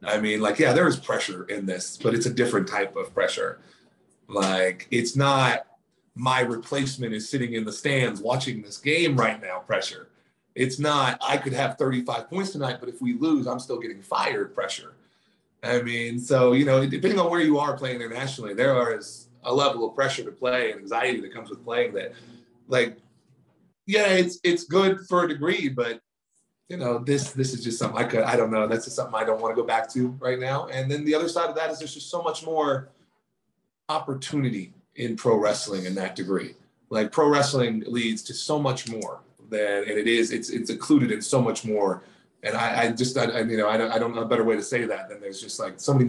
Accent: American